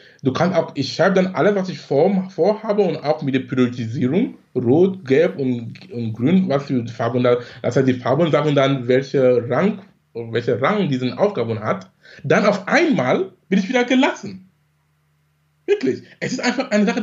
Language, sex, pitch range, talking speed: German, male, 145-225 Hz, 185 wpm